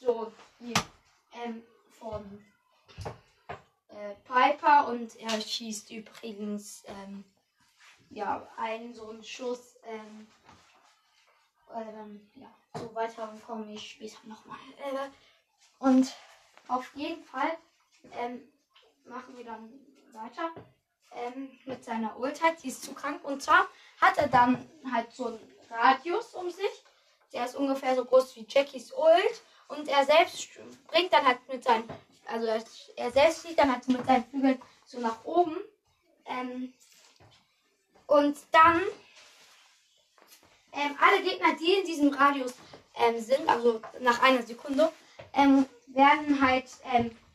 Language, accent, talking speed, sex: German, German, 130 wpm, female